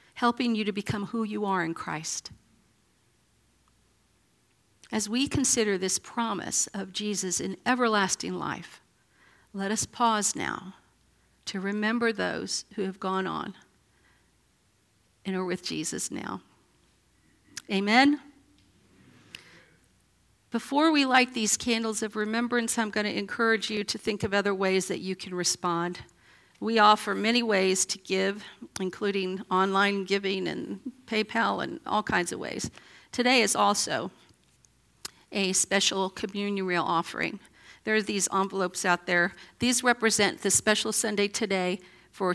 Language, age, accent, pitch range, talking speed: English, 50-69, American, 190-230 Hz, 130 wpm